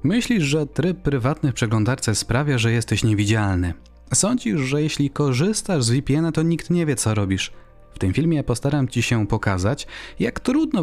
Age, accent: 30-49, native